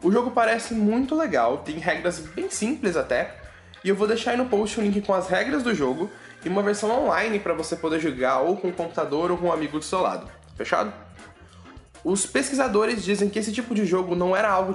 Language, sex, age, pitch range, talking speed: Portuguese, male, 10-29, 165-215 Hz, 225 wpm